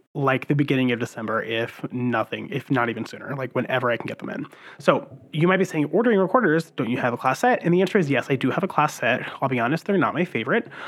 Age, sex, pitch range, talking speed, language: 30-49, male, 120-160 Hz, 270 wpm, English